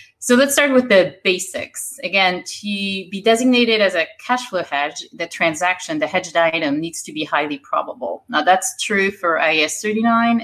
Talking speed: 180 wpm